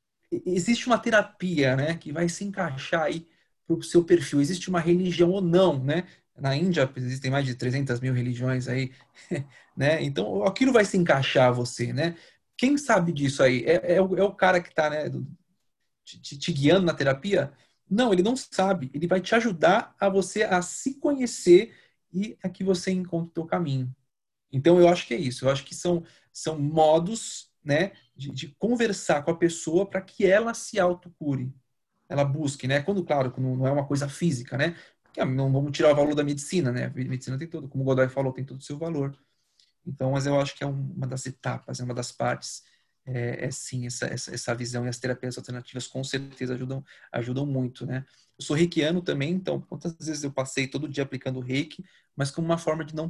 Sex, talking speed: male, 210 wpm